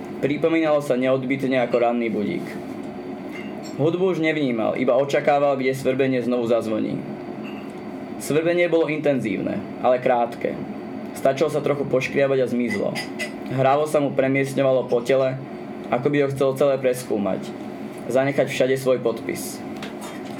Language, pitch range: Czech, 125-145 Hz